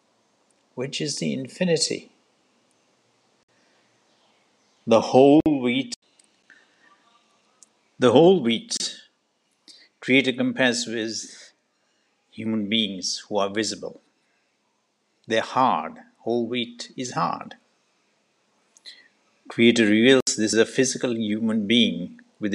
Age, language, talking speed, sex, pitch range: 60-79, English, 90 wpm, male, 105-130 Hz